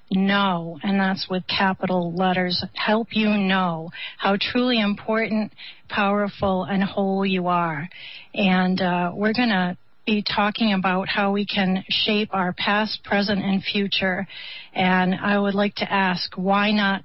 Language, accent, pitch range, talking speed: English, American, 190-215 Hz, 150 wpm